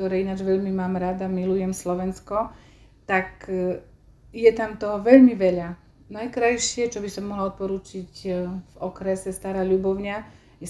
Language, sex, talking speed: Slovak, female, 135 wpm